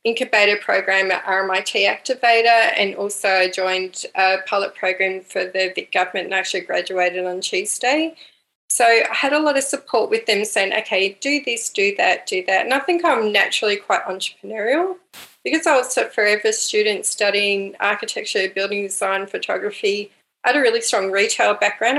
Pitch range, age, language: 190-260 Hz, 30-49, English